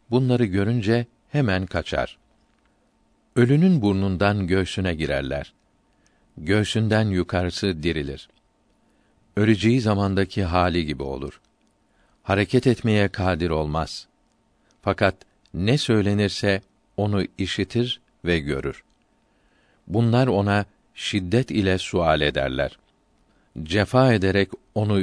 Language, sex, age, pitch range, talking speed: Turkish, male, 50-69, 90-115 Hz, 85 wpm